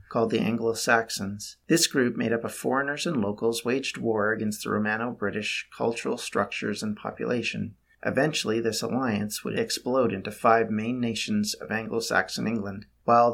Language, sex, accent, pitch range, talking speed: English, male, American, 105-135 Hz, 150 wpm